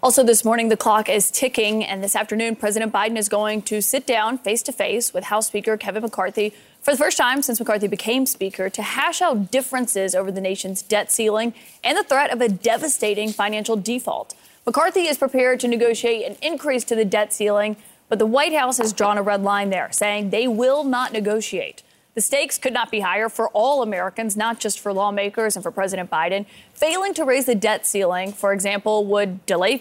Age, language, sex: 30-49, English, female